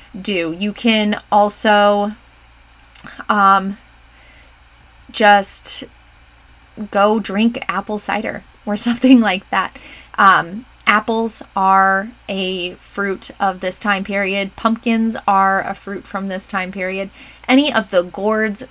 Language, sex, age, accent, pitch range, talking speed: English, female, 20-39, American, 190-240 Hz, 110 wpm